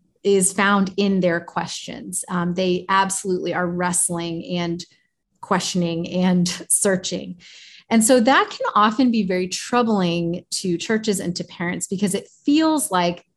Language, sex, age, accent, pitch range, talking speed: English, female, 30-49, American, 180-225 Hz, 140 wpm